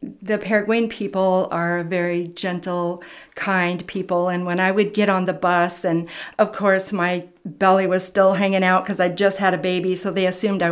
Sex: female